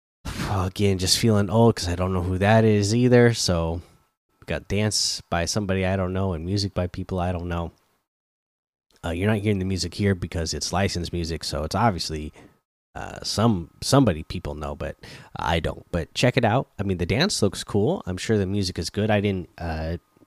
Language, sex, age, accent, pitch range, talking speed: English, male, 20-39, American, 85-105 Hz, 200 wpm